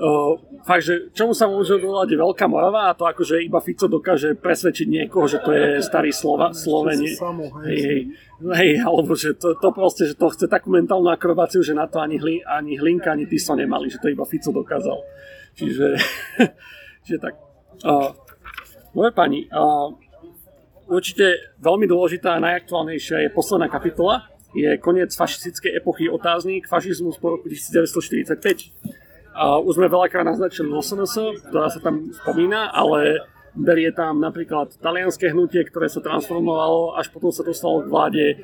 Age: 40-59